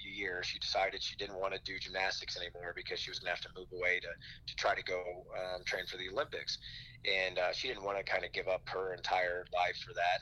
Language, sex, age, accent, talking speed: English, male, 30-49, American, 255 wpm